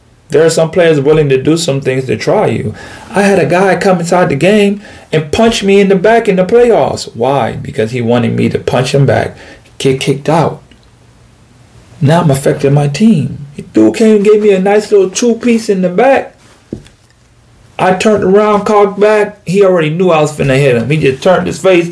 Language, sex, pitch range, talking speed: English, male, 140-185 Hz, 215 wpm